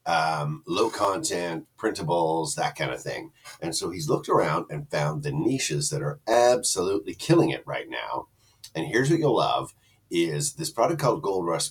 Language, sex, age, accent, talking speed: English, male, 50-69, American, 180 wpm